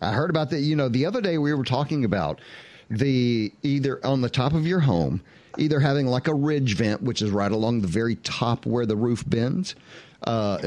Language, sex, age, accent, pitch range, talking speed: English, male, 50-69, American, 105-145 Hz, 220 wpm